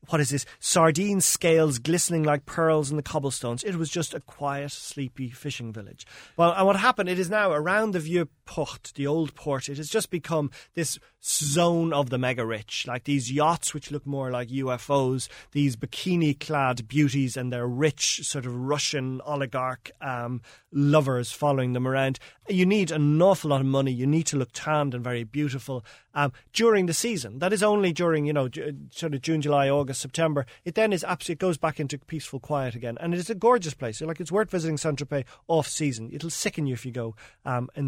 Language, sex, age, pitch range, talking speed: English, male, 30-49, 130-165 Hz, 205 wpm